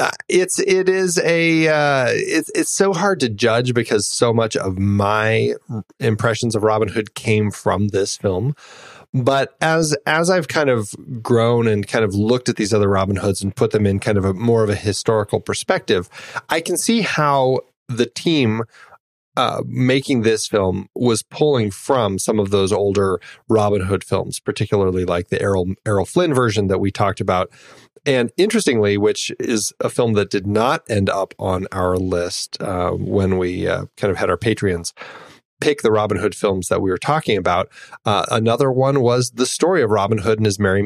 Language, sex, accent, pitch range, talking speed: English, male, American, 100-130 Hz, 190 wpm